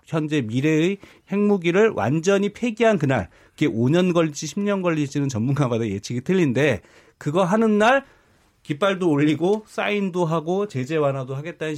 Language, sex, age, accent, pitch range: Korean, male, 40-59, native, 130-185 Hz